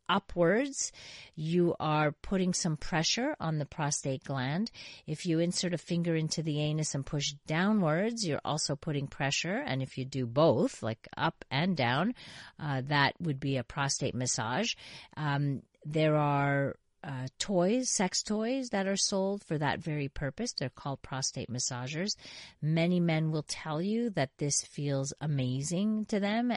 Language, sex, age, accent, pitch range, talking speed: English, female, 40-59, American, 135-170 Hz, 160 wpm